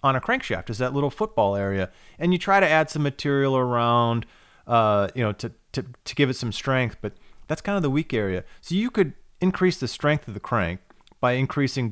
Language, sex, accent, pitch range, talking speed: English, male, American, 110-145 Hz, 215 wpm